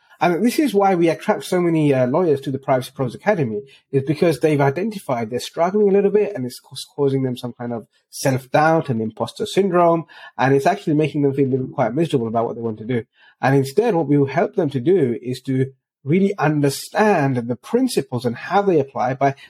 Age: 30-49